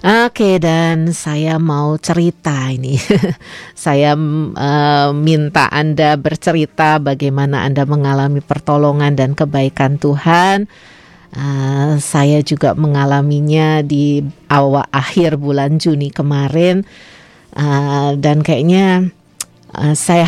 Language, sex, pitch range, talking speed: Indonesian, female, 140-170 Hz, 100 wpm